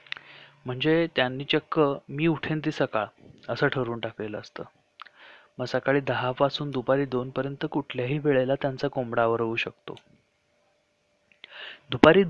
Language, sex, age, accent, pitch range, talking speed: Marathi, male, 30-49, native, 125-155 Hz, 110 wpm